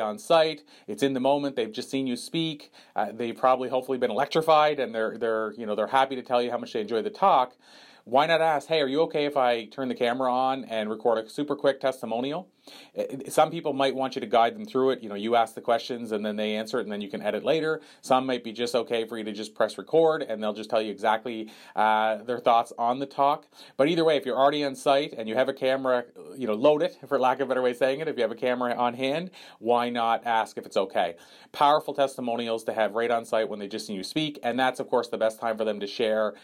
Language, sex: English, male